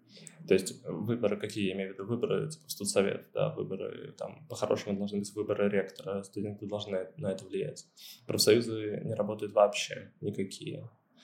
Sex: male